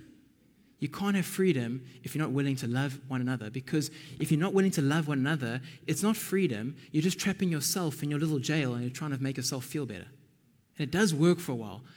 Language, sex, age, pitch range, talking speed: English, male, 20-39, 135-175 Hz, 235 wpm